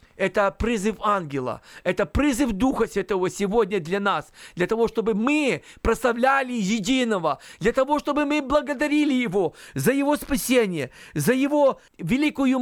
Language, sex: Russian, male